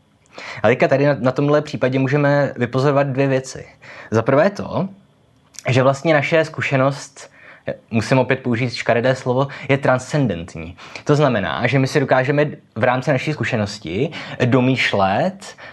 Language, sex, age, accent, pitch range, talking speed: Czech, male, 20-39, native, 115-140 Hz, 130 wpm